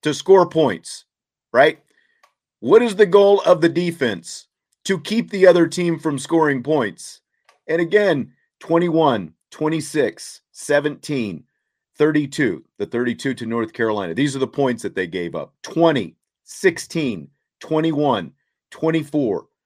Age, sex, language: 40-59, male, English